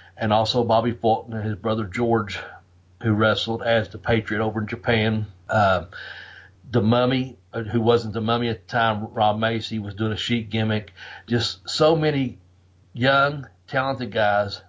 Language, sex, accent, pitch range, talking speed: English, male, American, 105-125 Hz, 160 wpm